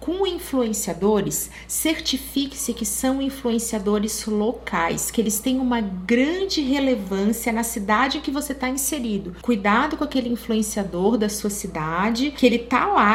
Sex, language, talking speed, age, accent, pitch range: female, Portuguese, 135 wpm, 40-59, Brazilian, 210-280 Hz